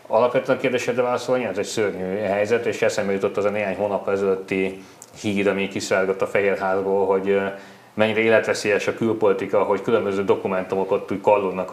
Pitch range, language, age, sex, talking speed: 95-110 Hz, Hungarian, 30-49, male, 145 wpm